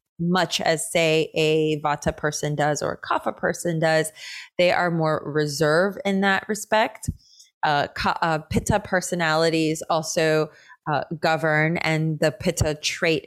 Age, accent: 20-39, American